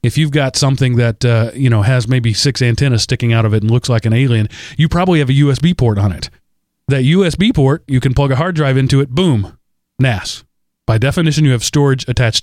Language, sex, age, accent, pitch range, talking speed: English, male, 30-49, American, 115-145 Hz, 230 wpm